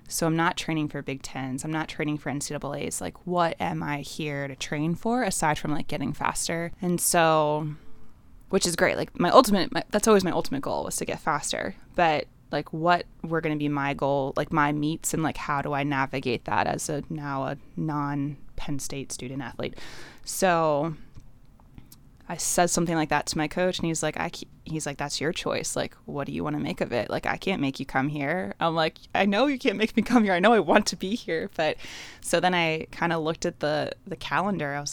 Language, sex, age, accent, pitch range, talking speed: English, female, 20-39, American, 140-165 Hz, 235 wpm